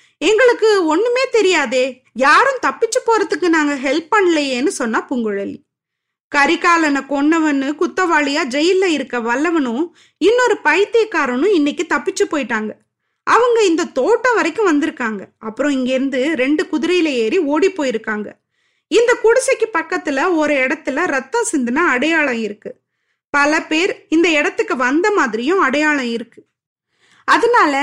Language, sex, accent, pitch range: Tamil, female, native, 275-380 Hz